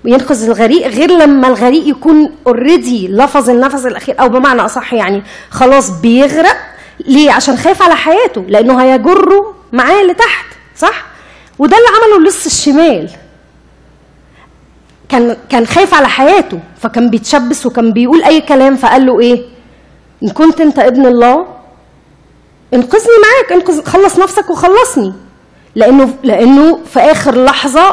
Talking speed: 130 wpm